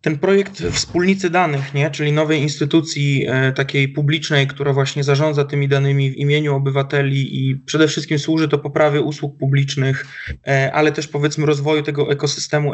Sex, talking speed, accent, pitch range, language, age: male, 160 wpm, native, 140-160 Hz, Polish, 20-39